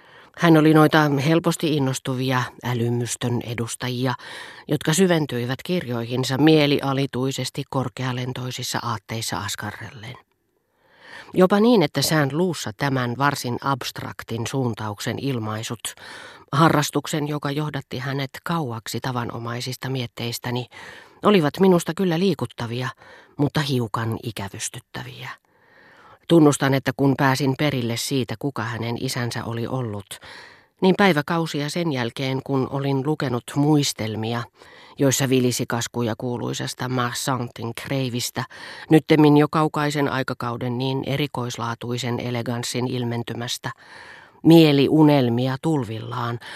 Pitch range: 120-145 Hz